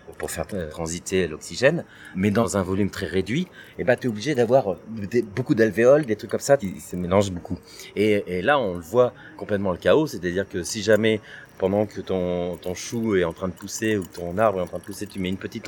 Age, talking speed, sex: 30-49, 235 wpm, male